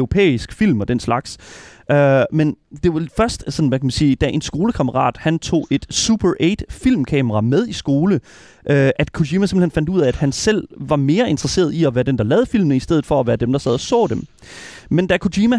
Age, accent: 30-49, native